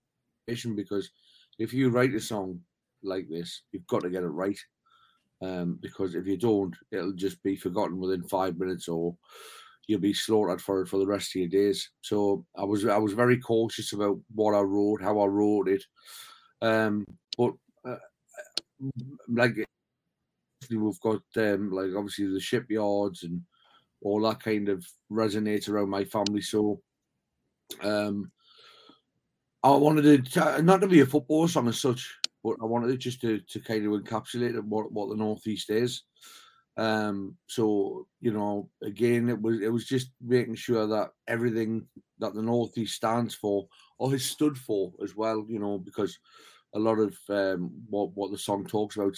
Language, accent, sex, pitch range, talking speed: English, British, male, 100-115 Hz, 170 wpm